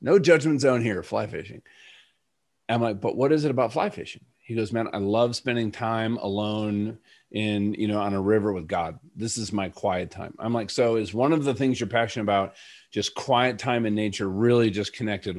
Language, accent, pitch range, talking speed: English, American, 100-120 Hz, 215 wpm